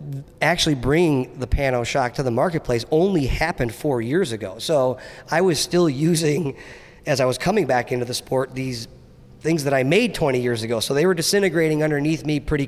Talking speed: 195 wpm